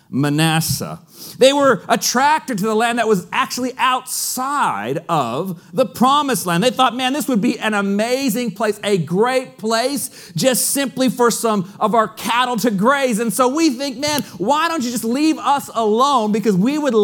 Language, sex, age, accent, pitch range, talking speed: English, male, 40-59, American, 155-245 Hz, 180 wpm